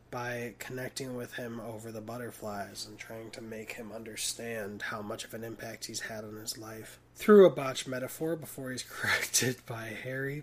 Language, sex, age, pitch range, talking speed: English, male, 20-39, 115-145 Hz, 185 wpm